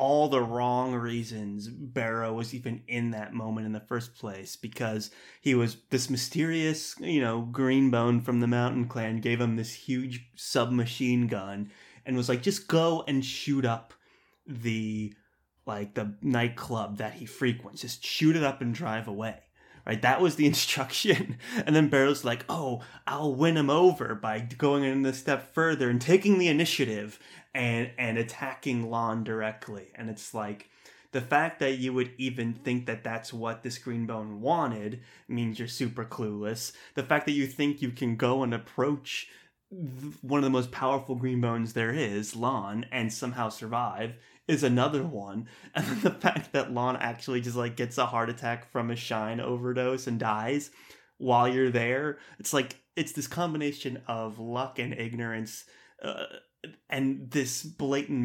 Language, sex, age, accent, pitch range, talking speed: English, male, 30-49, American, 115-135 Hz, 170 wpm